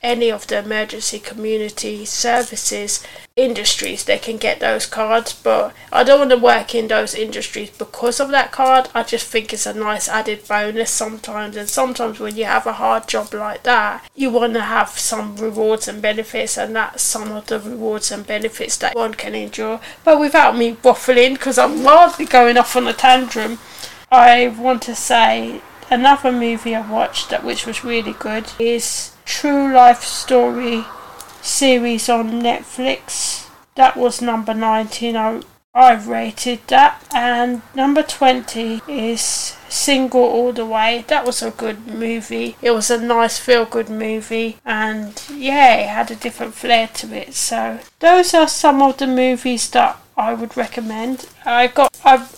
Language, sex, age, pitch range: English, female, 30-49, 220-255 Hz